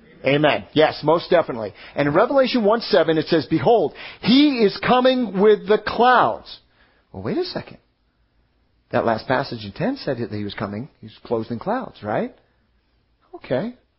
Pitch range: 130-210 Hz